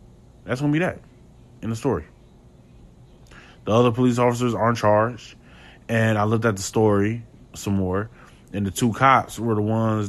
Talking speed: 180 wpm